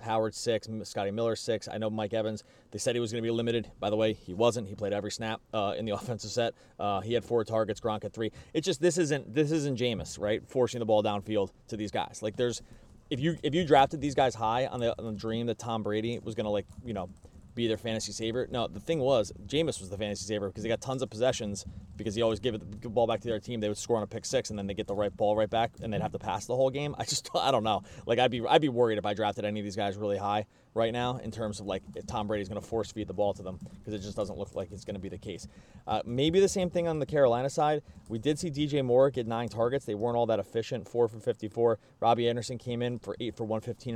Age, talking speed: 30-49, 290 wpm